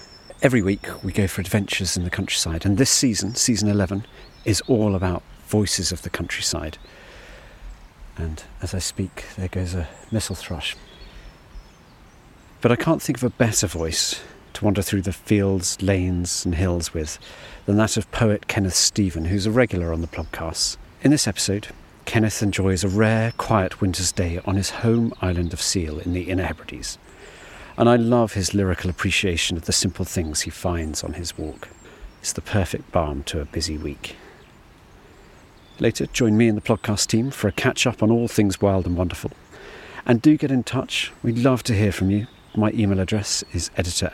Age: 40-59